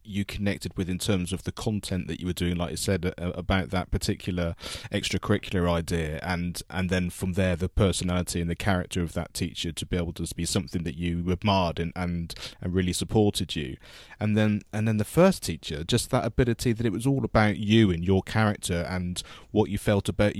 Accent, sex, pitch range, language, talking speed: British, male, 90-110 Hz, English, 220 wpm